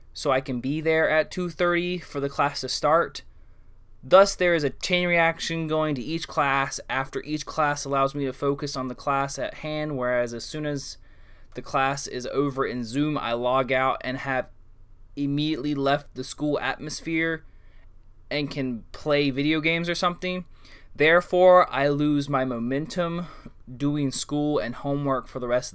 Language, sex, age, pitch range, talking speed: English, male, 20-39, 110-150 Hz, 170 wpm